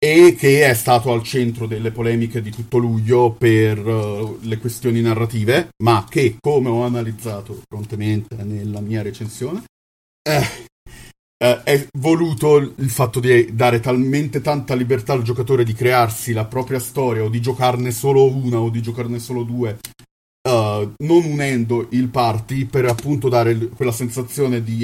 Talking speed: 150 wpm